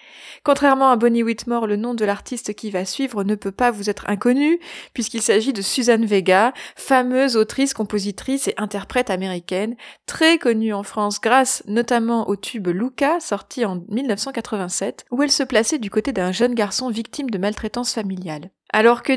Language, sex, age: French, female, 20-39